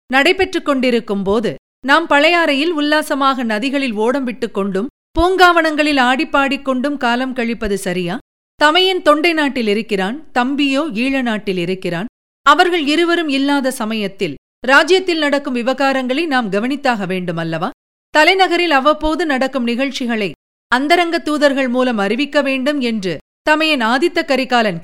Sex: female